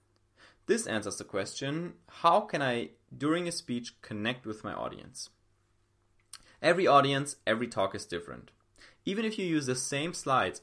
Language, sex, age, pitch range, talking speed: English, male, 30-49, 110-160 Hz, 150 wpm